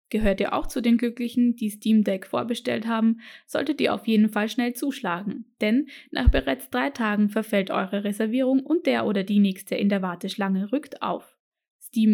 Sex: female